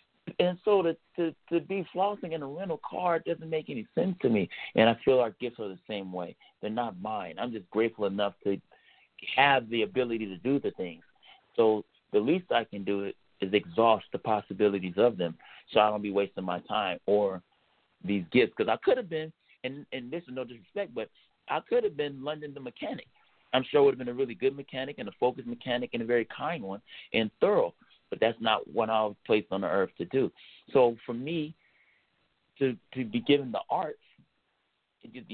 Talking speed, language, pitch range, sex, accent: 210 wpm, English, 110-165 Hz, male, American